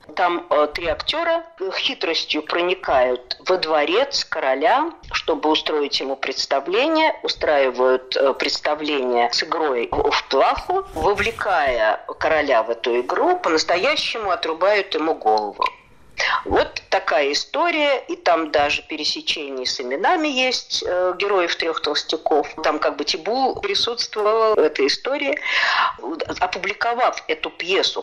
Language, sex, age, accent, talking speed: Russian, female, 50-69, native, 110 wpm